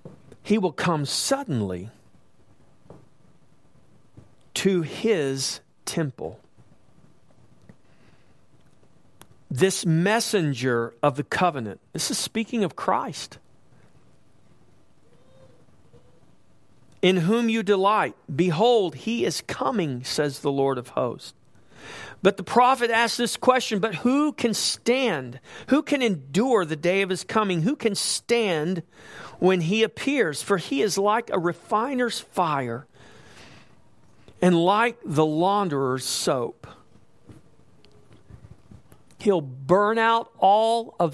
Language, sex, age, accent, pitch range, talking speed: English, male, 40-59, American, 135-225 Hz, 105 wpm